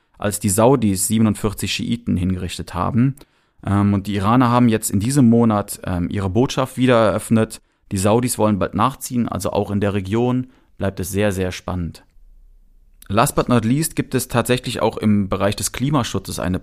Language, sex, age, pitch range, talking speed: German, male, 30-49, 100-125 Hz, 170 wpm